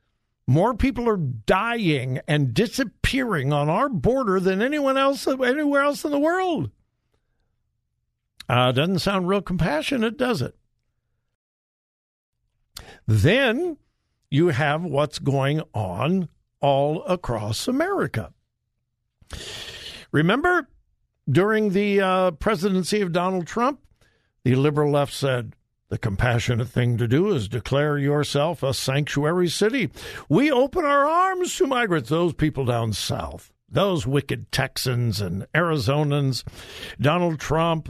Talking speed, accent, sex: 115 wpm, American, male